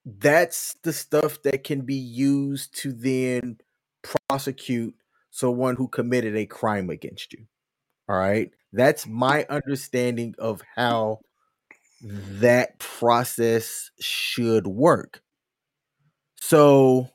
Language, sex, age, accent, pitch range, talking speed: English, male, 30-49, American, 130-175 Hz, 100 wpm